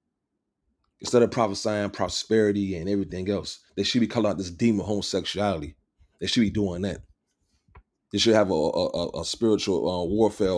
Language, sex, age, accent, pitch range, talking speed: English, male, 30-49, American, 95-110 Hz, 170 wpm